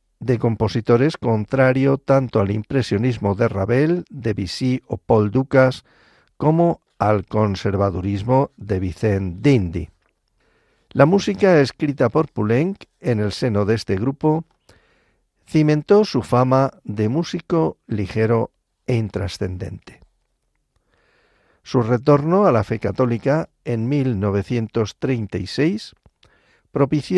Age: 50-69